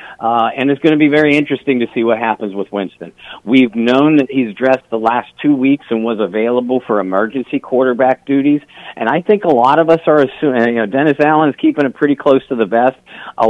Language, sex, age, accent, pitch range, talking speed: English, male, 50-69, American, 115-140 Hz, 230 wpm